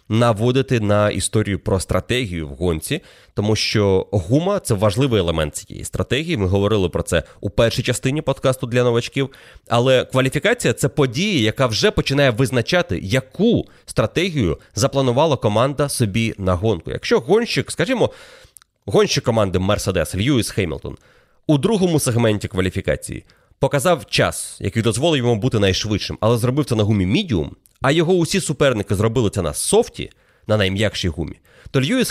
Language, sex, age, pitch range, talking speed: Ukrainian, male, 30-49, 105-145 Hz, 150 wpm